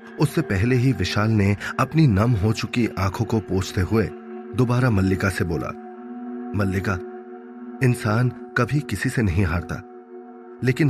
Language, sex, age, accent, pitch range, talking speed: Hindi, male, 30-49, native, 100-130 Hz, 140 wpm